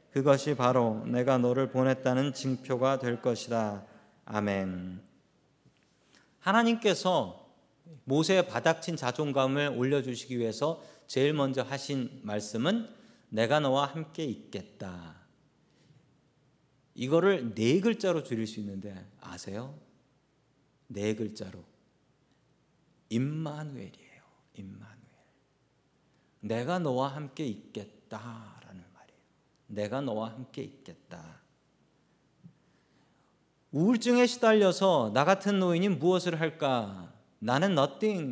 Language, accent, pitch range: Korean, native, 120-175 Hz